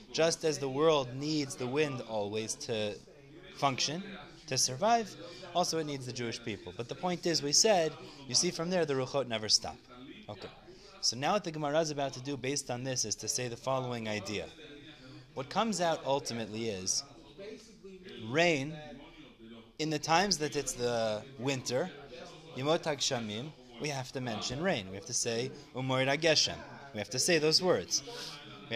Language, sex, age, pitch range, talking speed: English, male, 20-39, 125-170 Hz, 165 wpm